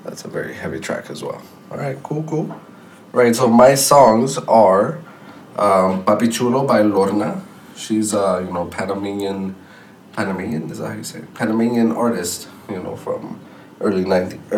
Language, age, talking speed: English, 20-39, 170 wpm